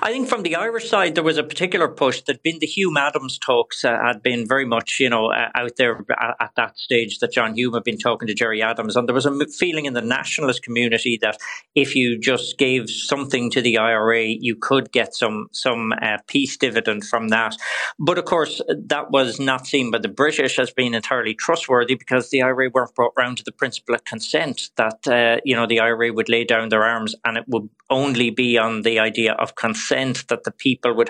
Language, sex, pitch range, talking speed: English, male, 115-135 Hz, 225 wpm